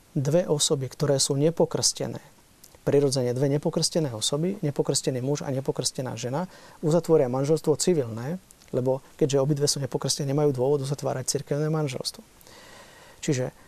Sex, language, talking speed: male, Slovak, 125 wpm